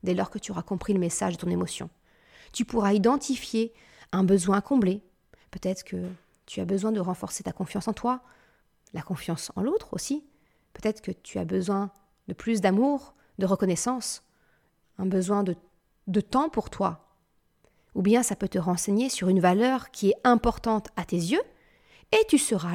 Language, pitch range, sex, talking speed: French, 185-235 Hz, female, 180 wpm